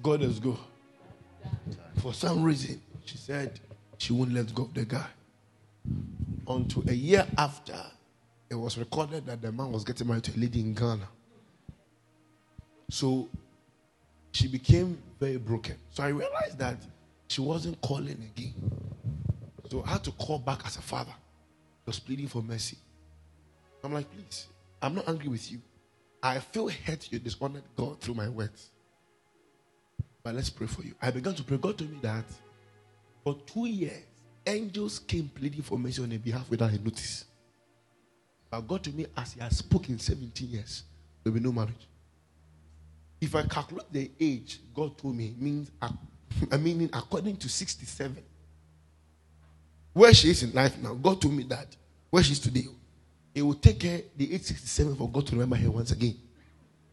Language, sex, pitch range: English, male, 105-140 Hz